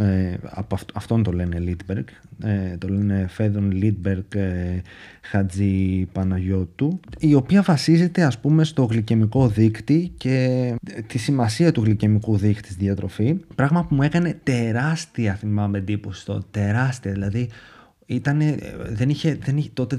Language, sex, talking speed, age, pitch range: Greek, male, 115 wpm, 30-49, 105-140 Hz